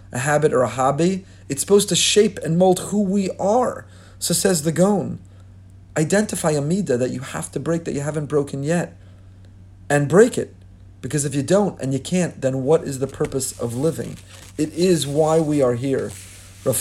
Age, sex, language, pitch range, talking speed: 40-59, male, English, 105-165 Hz, 195 wpm